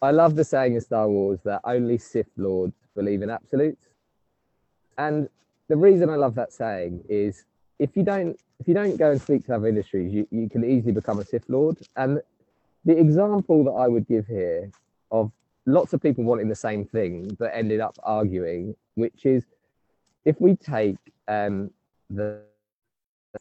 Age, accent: 20-39, British